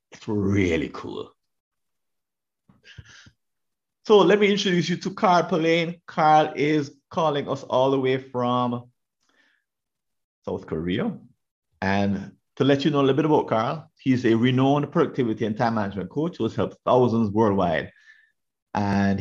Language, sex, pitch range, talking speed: English, male, 110-150 Hz, 140 wpm